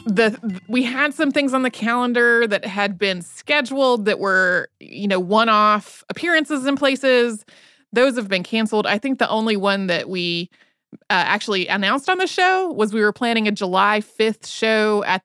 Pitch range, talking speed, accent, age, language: 200-270 Hz, 180 wpm, American, 30-49, English